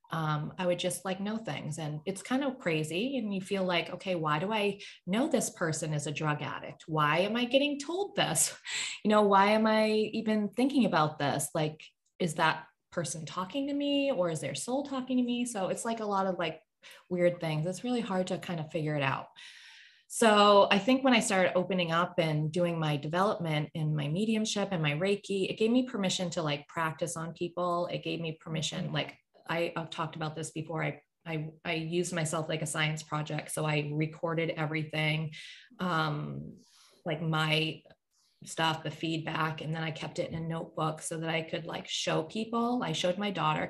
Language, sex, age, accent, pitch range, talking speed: English, female, 20-39, American, 155-195 Hz, 205 wpm